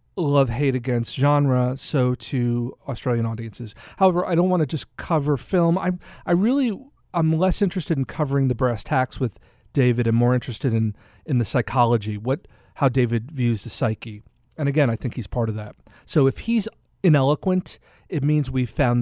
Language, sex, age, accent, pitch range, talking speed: English, male, 40-59, American, 115-145 Hz, 185 wpm